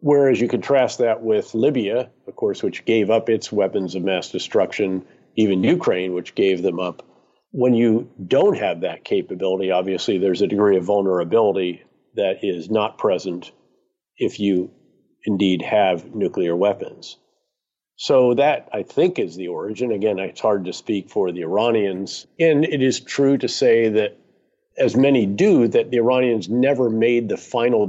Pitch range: 95-125 Hz